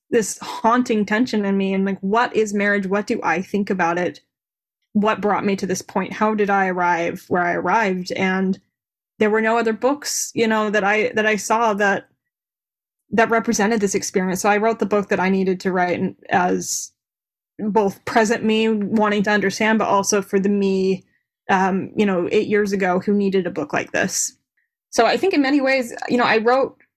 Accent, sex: American, female